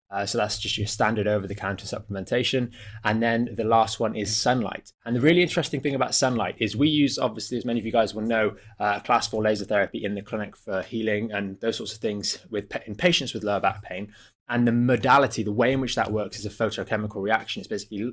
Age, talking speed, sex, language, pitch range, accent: 20-39, 230 wpm, male, English, 105-120 Hz, British